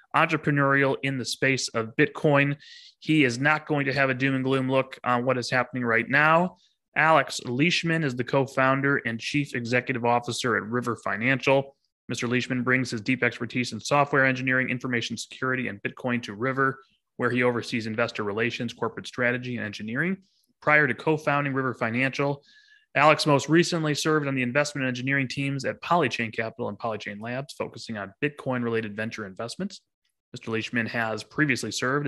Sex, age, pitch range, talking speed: male, 20-39, 120-145 Hz, 165 wpm